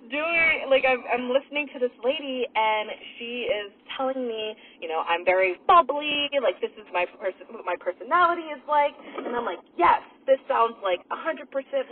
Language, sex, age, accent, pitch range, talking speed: English, female, 20-39, American, 205-290 Hz, 180 wpm